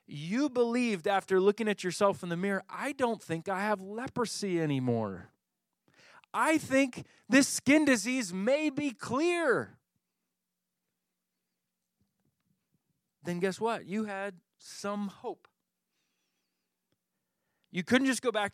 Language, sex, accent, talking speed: English, male, American, 115 wpm